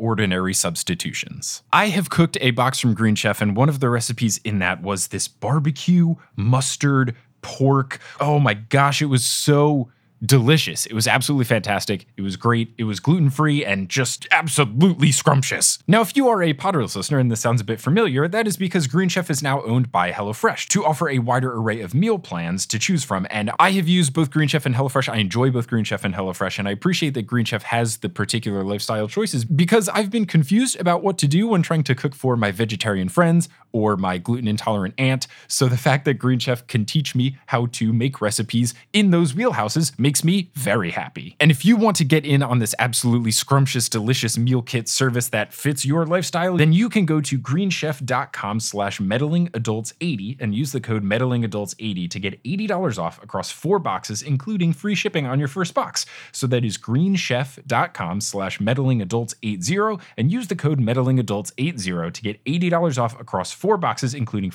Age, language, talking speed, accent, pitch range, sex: 20-39, English, 195 wpm, American, 110-160 Hz, male